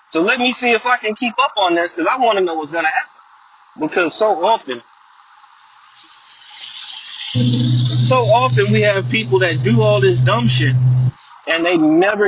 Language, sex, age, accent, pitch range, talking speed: English, male, 30-49, American, 180-255 Hz, 180 wpm